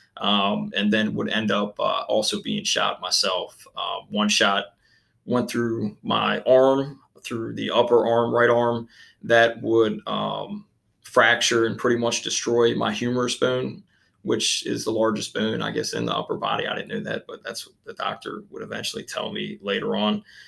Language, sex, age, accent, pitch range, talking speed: English, male, 20-39, American, 110-125 Hz, 180 wpm